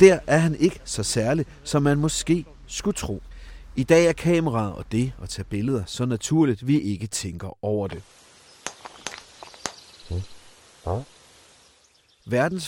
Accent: native